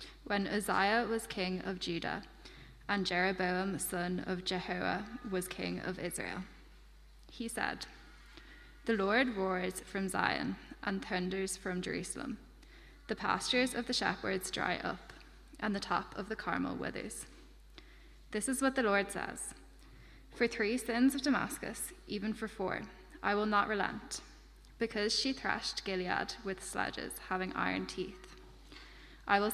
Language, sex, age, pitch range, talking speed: English, female, 10-29, 190-225 Hz, 140 wpm